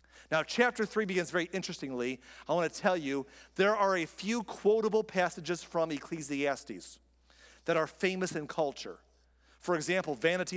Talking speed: 155 wpm